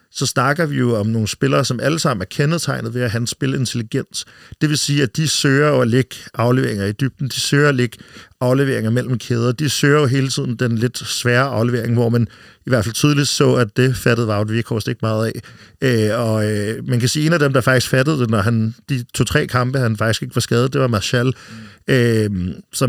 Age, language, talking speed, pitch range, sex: 50-69, Danish, 225 wpm, 115-135 Hz, male